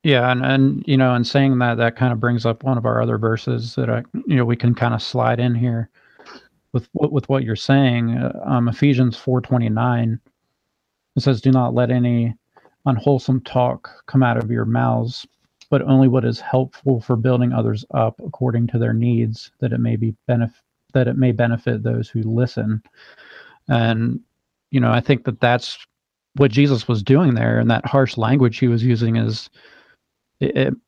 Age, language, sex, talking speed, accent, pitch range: 40-59, English, male, 190 wpm, American, 115-130 Hz